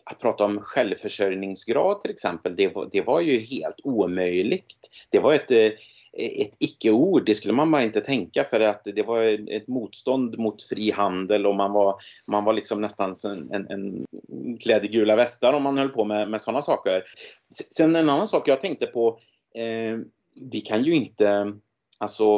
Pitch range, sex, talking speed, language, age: 100-120 Hz, male, 180 wpm, Swedish, 30-49